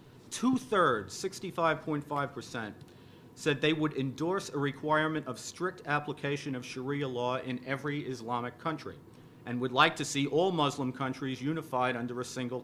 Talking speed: 140 wpm